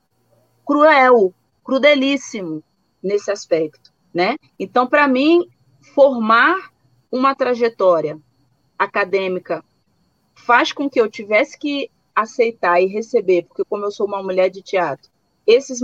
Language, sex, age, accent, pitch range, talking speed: Portuguese, female, 30-49, Brazilian, 190-270 Hz, 115 wpm